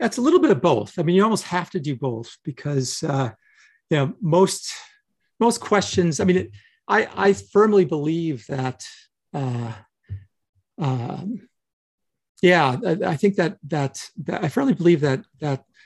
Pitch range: 130-185 Hz